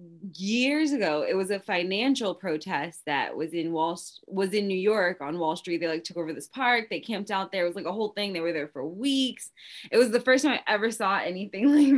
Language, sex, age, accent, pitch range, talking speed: English, female, 20-39, American, 170-225 Hz, 250 wpm